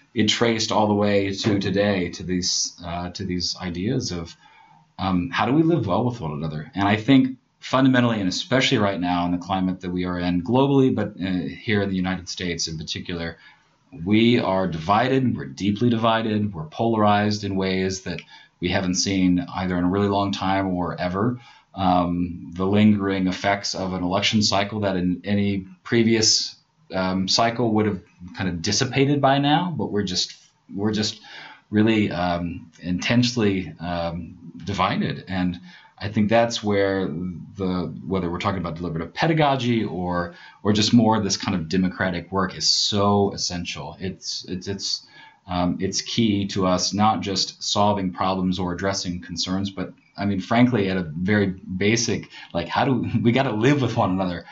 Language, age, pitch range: English, 30-49, 90-110 Hz